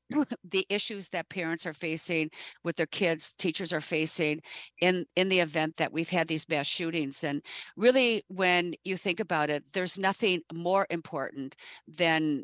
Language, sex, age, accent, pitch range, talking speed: English, female, 50-69, American, 165-205 Hz, 165 wpm